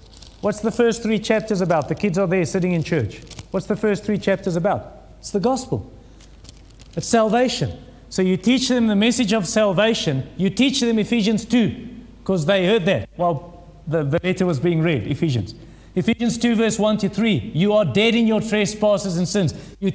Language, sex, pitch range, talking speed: English, male, 190-240 Hz, 195 wpm